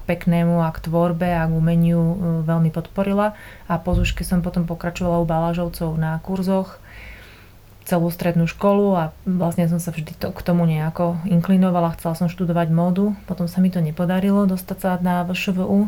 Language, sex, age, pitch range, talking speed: Slovak, female, 30-49, 160-185 Hz, 170 wpm